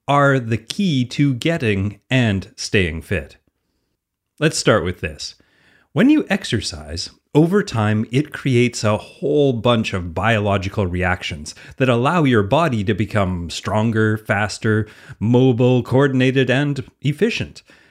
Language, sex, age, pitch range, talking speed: English, male, 30-49, 95-135 Hz, 125 wpm